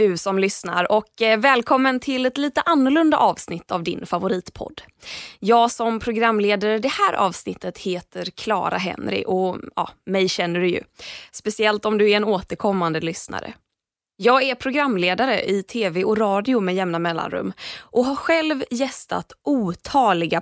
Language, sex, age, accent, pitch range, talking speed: Swedish, female, 20-39, native, 190-260 Hz, 150 wpm